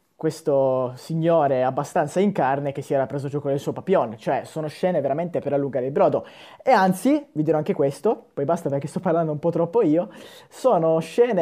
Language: Italian